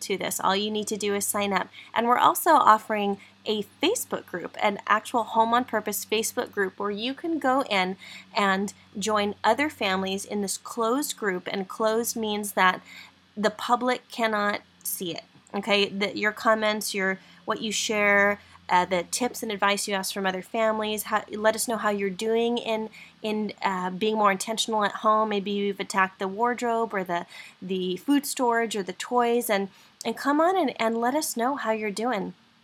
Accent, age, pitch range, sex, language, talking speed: American, 20-39, 200-245 Hz, female, English, 190 wpm